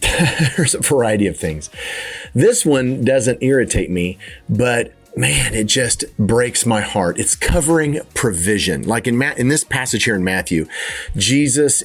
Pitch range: 95-125 Hz